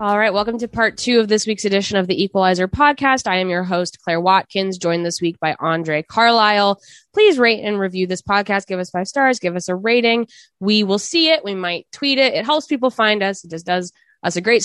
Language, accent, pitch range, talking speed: English, American, 170-230 Hz, 240 wpm